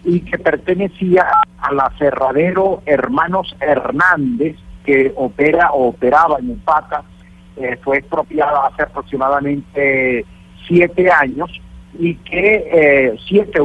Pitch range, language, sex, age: 140-180 Hz, Spanish, male, 50-69